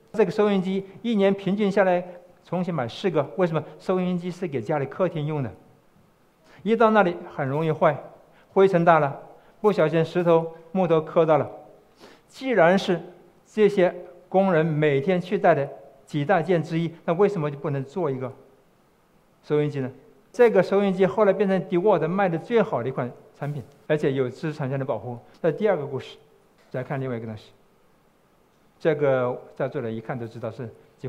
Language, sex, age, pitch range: Chinese, male, 60-79, 140-185 Hz